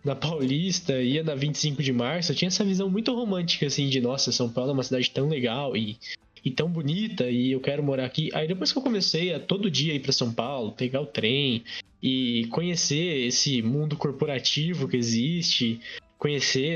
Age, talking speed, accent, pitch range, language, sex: 20-39, 195 wpm, Brazilian, 130-165 Hz, Portuguese, male